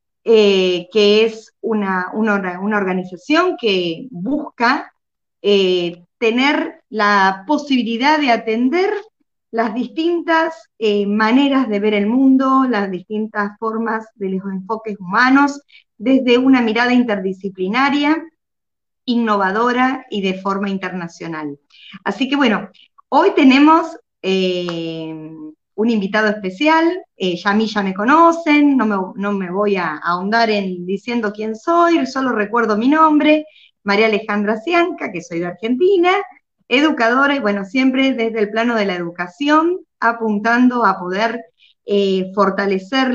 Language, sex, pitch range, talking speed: Spanish, female, 195-265 Hz, 125 wpm